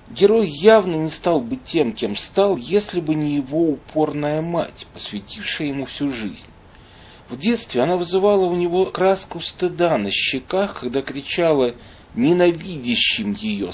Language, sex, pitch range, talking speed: Russian, male, 130-175 Hz, 140 wpm